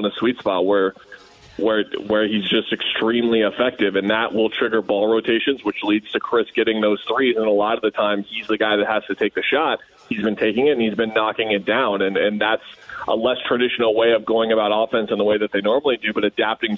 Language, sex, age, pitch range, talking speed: English, male, 20-39, 105-115 Hz, 245 wpm